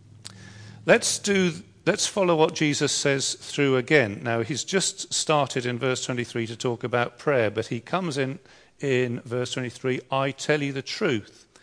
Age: 40-59